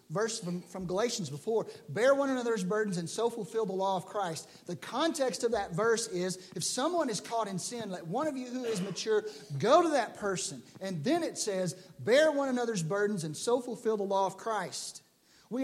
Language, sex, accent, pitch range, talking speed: English, male, American, 180-245 Hz, 205 wpm